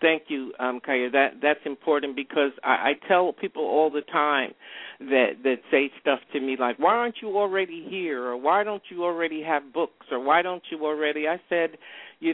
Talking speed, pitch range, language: 205 wpm, 145-180 Hz, English